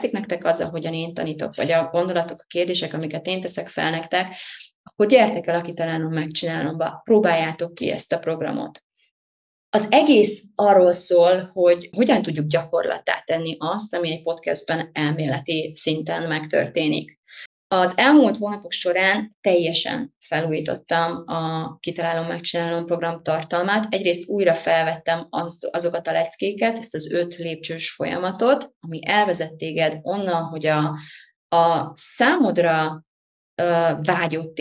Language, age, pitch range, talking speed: Hungarian, 20-39, 160-180 Hz, 130 wpm